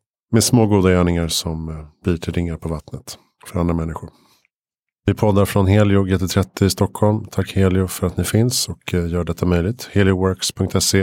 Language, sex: Swedish, male